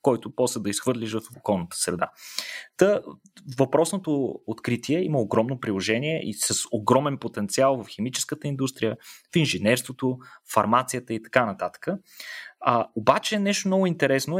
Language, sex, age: Bulgarian, male, 30-49